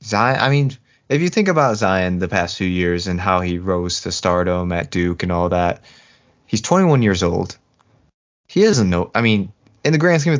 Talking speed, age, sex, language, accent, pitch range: 215 wpm, 20-39, male, English, American, 95-115 Hz